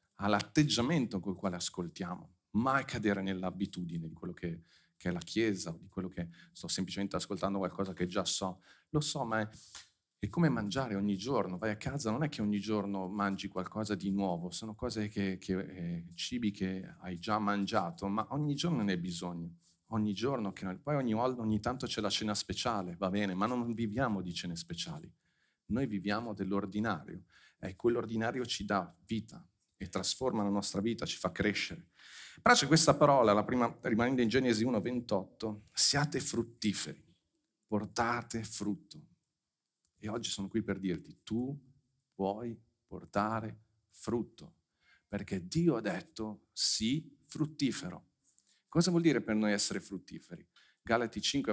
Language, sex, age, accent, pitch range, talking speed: Italian, male, 40-59, native, 95-120 Hz, 160 wpm